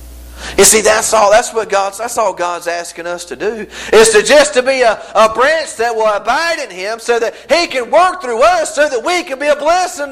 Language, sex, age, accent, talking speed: English, male, 50-69, American, 245 wpm